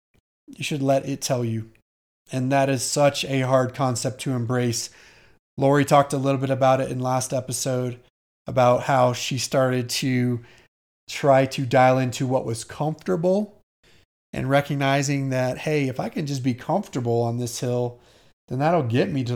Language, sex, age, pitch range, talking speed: English, male, 30-49, 125-145 Hz, 170 wpm